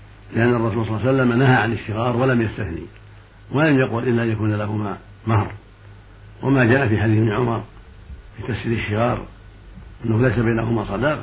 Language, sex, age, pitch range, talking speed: Arabic, male, 60-79, 100-120 Hz, 165 wpm